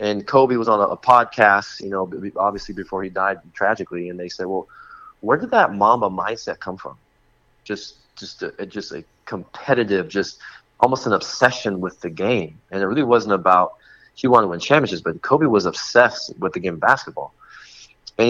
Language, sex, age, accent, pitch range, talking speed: English, male, 30-49, American, 95-120 Hz, 190 wpm